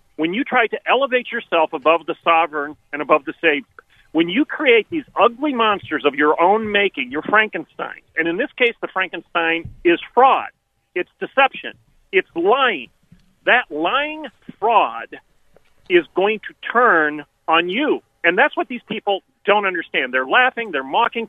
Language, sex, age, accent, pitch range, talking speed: English, male, 40-59, American, 175-265 Hz, 160 wpm